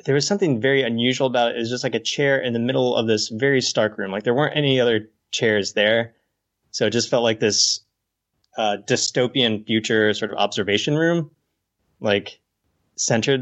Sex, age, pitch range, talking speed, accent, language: male, 20-39, 105-140 Hz, 190 wpm, American, English